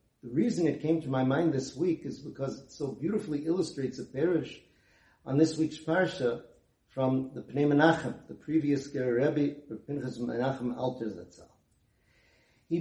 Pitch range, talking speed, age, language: 125-160 Hz, 155 wpm, 50-69, English